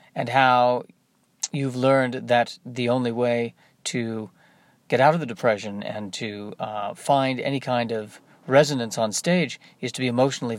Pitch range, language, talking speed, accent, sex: 115-145 Hz, English, 160 wpm, American, male